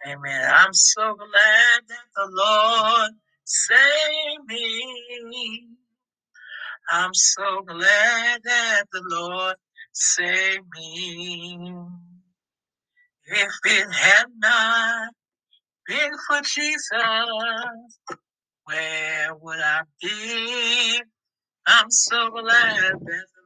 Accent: American